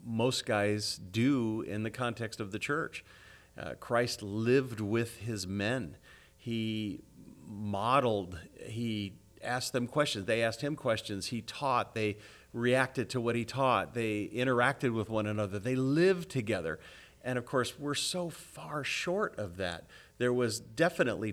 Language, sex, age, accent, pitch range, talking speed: English, male, 40-59, American, 105-135 Hz, 150 wpm